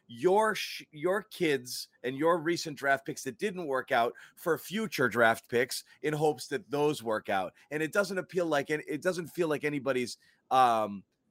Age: 30-49